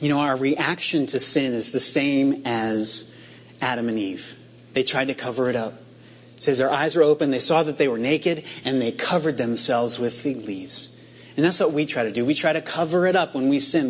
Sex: male